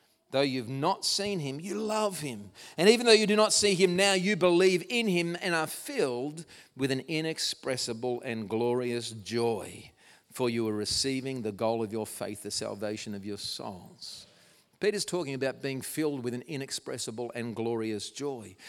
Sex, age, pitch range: male, 50-69, 120-175 Hz